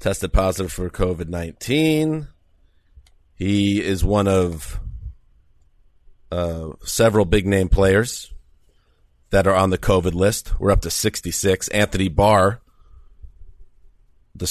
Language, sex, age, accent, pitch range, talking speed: English, male, 40-59, American, 85-105 Hz, 105 wpm